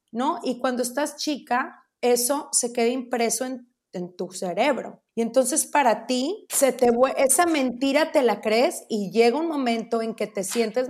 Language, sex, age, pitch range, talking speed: Spanish, female, 30-49, 215-255 Hz, 175 wpm